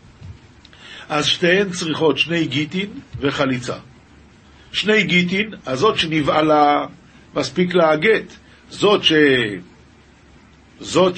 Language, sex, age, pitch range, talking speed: Hebrew, male, 50-69, 130-180 Hz, 90 wpm